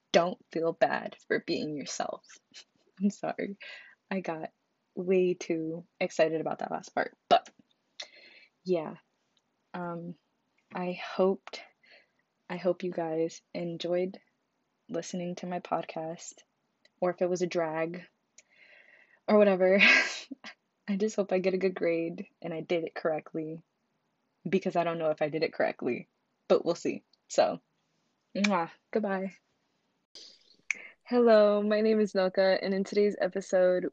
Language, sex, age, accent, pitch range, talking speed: English, female, 20-39, American, 170-195 Hz, 135 wpm